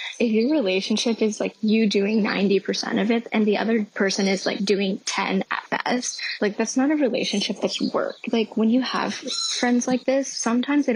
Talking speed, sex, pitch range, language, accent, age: 195 wpm, female, 195-245 Hz, English, American, 10-29